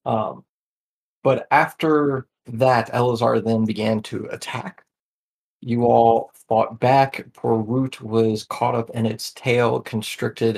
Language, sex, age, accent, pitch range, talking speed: English, male, 30-49, American, 110-130 Hz, 120 wpm